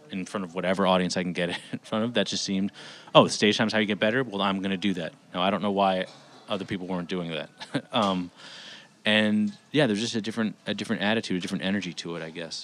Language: English